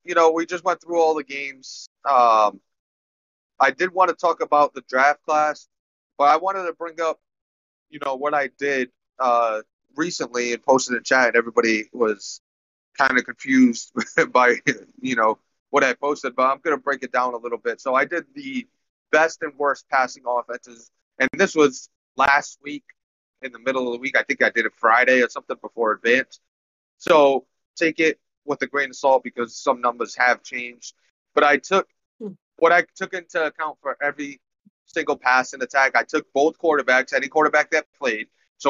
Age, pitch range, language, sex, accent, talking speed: 30-49, 125-170 Hz, English, male, American, 190 wpm